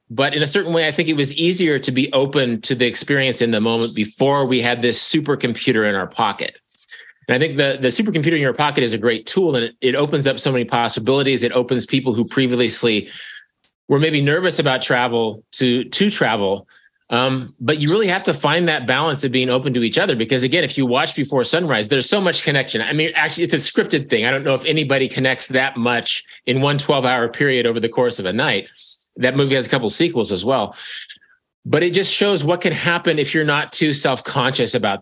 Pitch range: 125-155 Hz